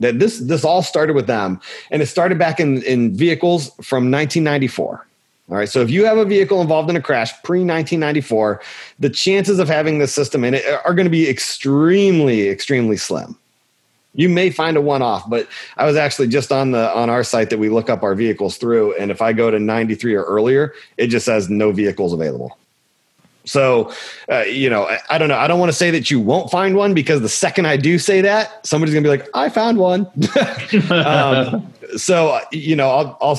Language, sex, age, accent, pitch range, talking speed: English, male, 30-49, American, 125-175 Hz, 215 wpm